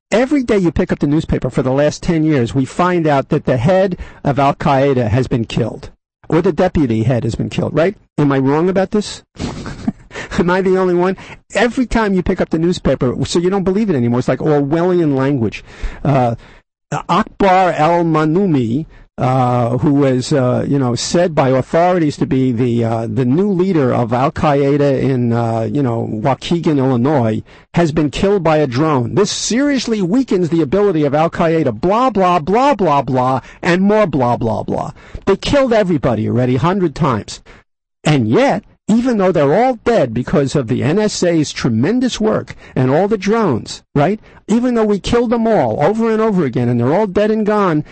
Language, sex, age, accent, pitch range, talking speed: English, male, 50-69, American, 135-200 Hz, 190 wpm